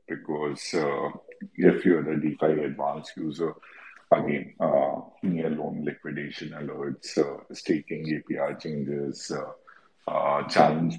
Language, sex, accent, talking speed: English, male, Indian, 115 wpm